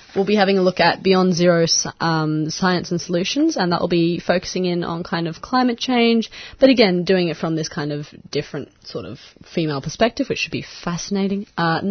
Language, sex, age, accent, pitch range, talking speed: English, female, 20-39, Australian, 160-200 Hz, 210 wpm